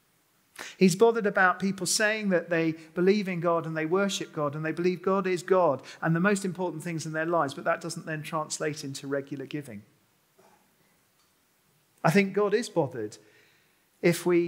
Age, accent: 40-59, British